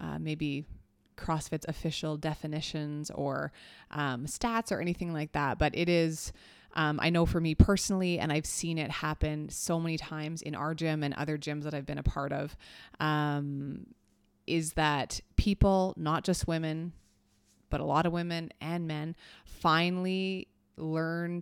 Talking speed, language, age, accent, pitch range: 160 wpm, English, 20-39, American, 150-170 Hz